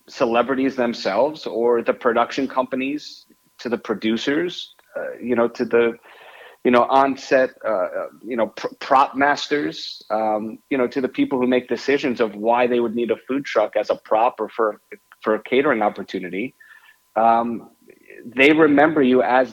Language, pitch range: English, 115-135 Hz